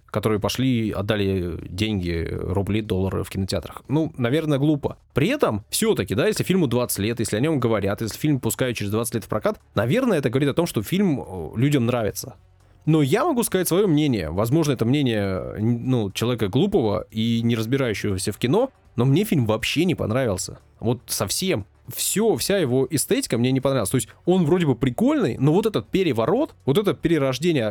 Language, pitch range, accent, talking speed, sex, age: Russian, 110-160 Hz, native, 185 wpm, male, 20-39